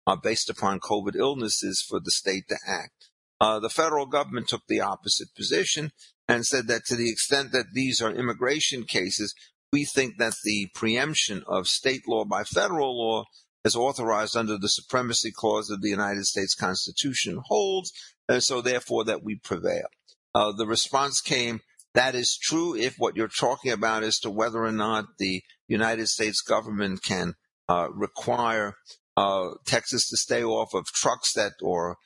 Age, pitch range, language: 50-69, 105-125 Hz, English